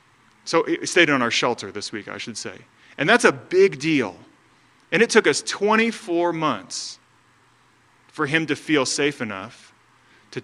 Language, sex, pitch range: English, male, 125-155 Hz